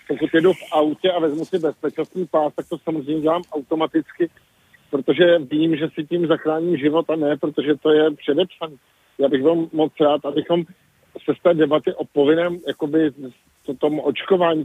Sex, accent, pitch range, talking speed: male, native, 145-170 Hz, 170 wpm